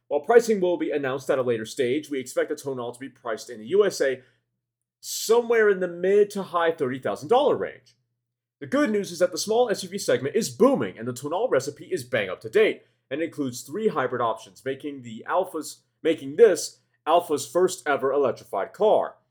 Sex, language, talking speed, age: male, English, 185 wpm, 30-49